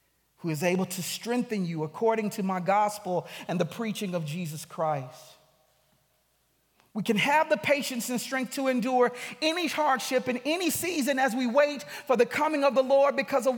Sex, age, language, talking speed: male, 40-59, English, 175 wpm